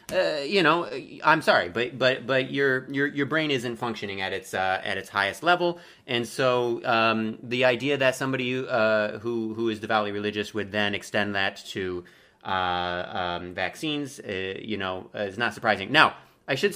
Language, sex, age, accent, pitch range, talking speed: English, male, 30-49, American, 105-135 Hz, 185 wpm